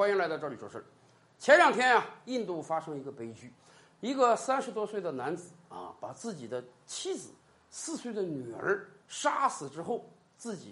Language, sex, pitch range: Chinese, male, 200-300 Hz